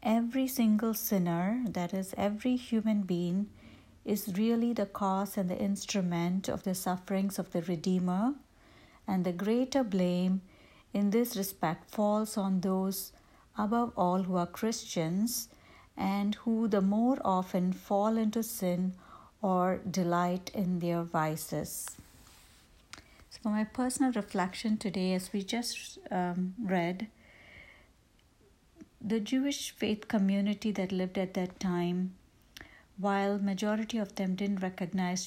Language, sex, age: English, female, 60-79